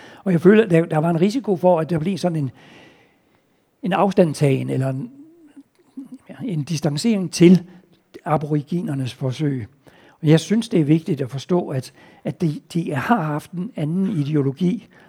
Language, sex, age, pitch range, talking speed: Danish, male, 60-79, 135-180 Hz, 160 wpm